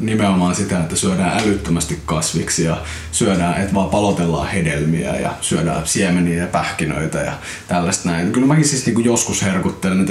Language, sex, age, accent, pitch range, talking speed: Finnish, male, 20-39, native, 95-125 Hz, 160 wpm